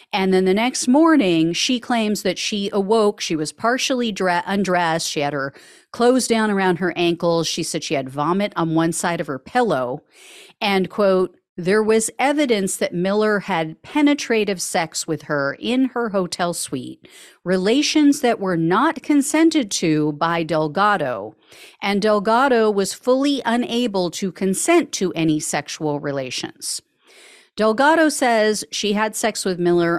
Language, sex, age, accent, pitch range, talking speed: English, female, 40-59, American, 170-235 Hz, 150 wpm